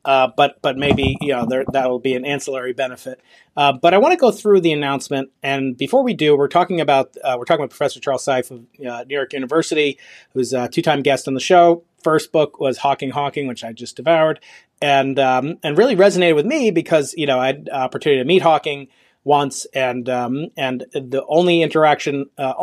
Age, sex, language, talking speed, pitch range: 30-49, male, English, 215 wpm, 130-155 Hz